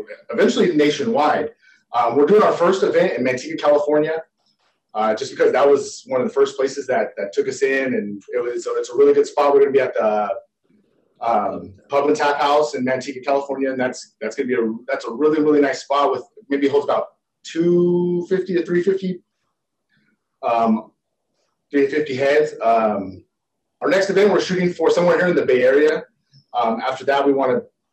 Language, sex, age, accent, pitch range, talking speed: English, male, 30-49, American, 130-195 Hz, 185 wpm